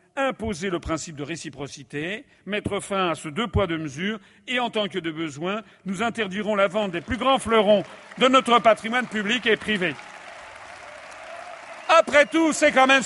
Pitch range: 160-260 Hz